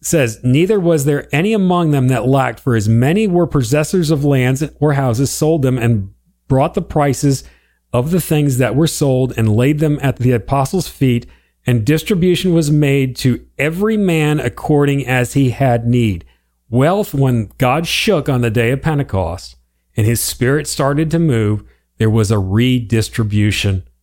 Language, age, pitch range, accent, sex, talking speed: English, 40-59, 95-150 Hz, American, male, 170 wpm